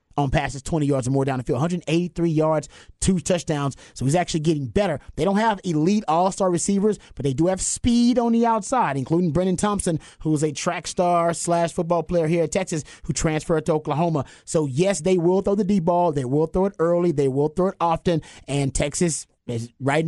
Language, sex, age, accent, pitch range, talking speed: English, male, 30-49, American, 150-185 Hz, 210 wpm